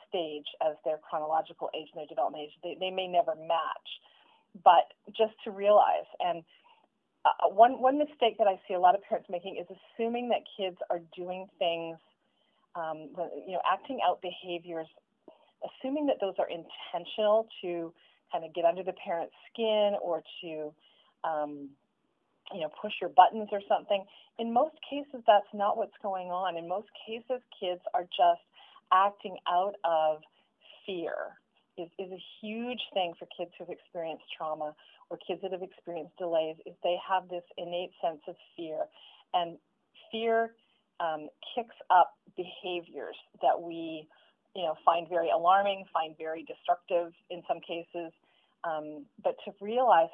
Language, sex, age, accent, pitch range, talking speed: English, female, 30-49, American, 170-220 Hz, 160 wpm